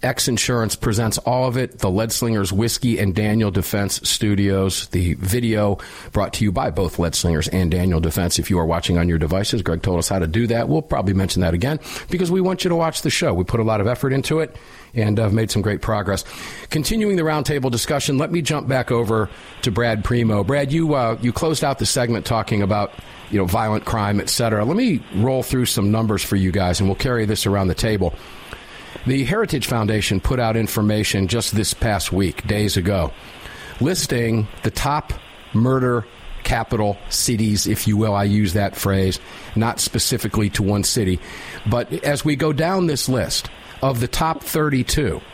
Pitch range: 100-130 Hz